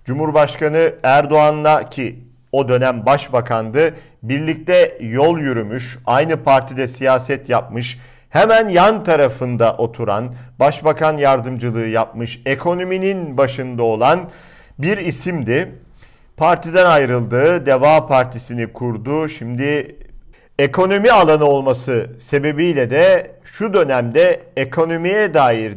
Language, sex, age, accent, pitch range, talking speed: Turkish, male, 50-69, native, 125-155 Hz, 95 wpm